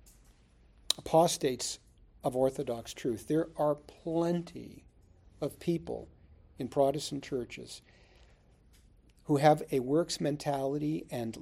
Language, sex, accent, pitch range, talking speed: English, male, American, 130-190 Hz, 95 wpm